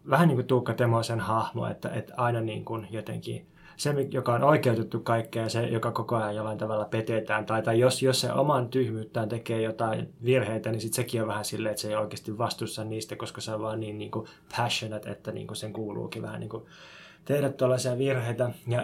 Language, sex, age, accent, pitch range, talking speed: Finnish, male, 20-39, native, 115-135 Hz, 215 wpm